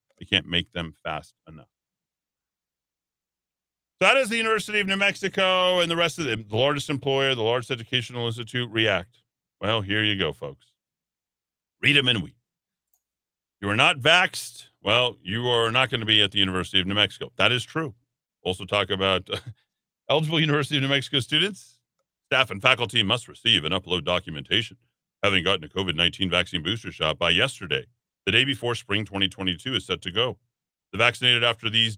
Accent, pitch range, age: American, 100-150 Hz, 40-59